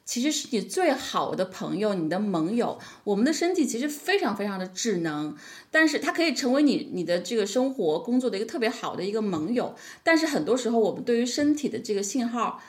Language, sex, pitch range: Chinese, female, 195-260 Hz